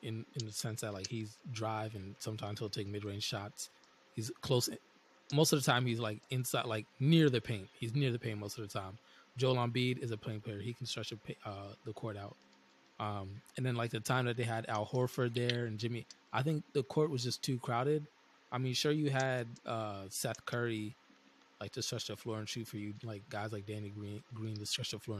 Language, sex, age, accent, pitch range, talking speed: English, male, 20-39, American, 105-130 Hz, 235 wpm